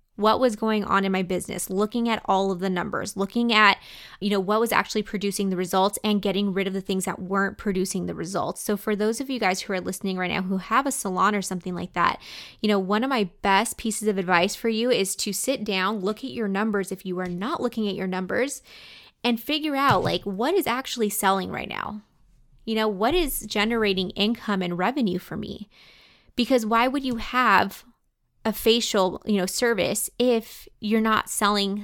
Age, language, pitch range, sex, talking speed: 20-39, English, 190-225 Hz, female, 215 wpm